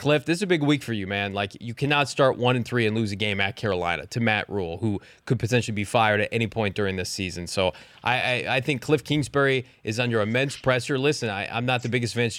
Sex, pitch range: male, 115-140 Hz